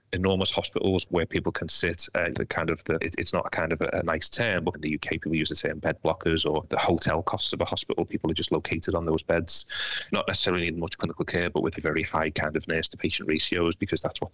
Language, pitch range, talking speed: English, 85-95 Hz, 270 wpm